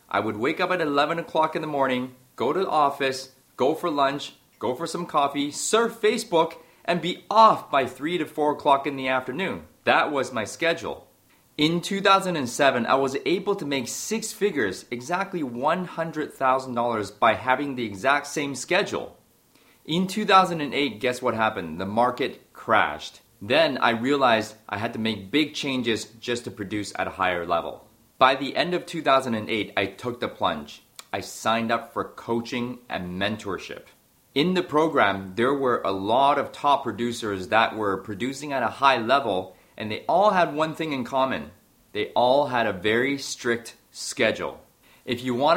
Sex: male